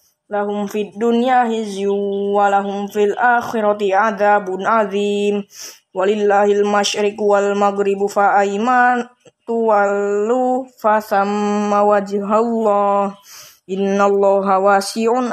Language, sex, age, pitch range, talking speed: Indonesian, female, 20-39, 200-225 Hz, 80 wpm